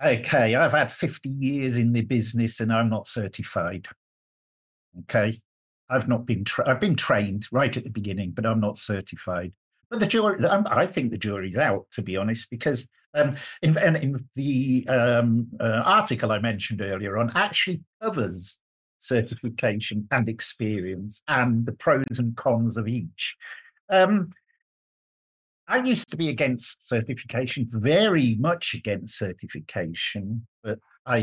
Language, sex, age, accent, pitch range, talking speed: English, male, 50-69, British, 105-130 Hz, 140 wpm